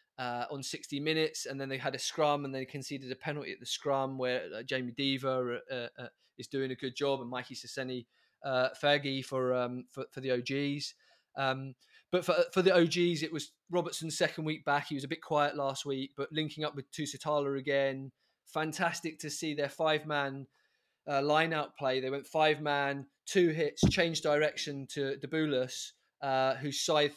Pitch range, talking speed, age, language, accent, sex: 135-160 Hz, 190 wpm, 20-39, English, British, male